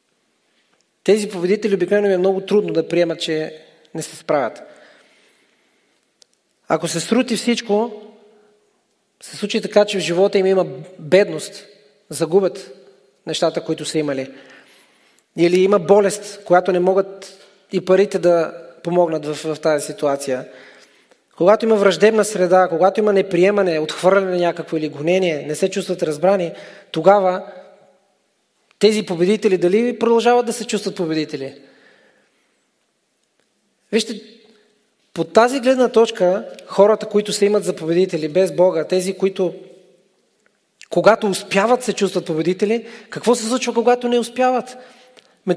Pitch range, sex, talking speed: 175-220 Hz, male, 130 wpm